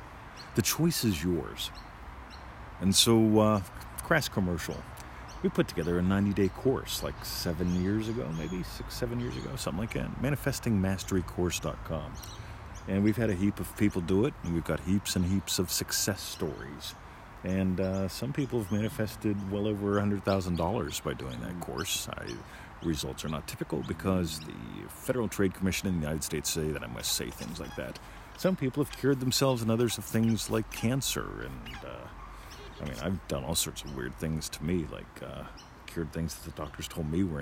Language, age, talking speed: English, 50-69, 185 wpm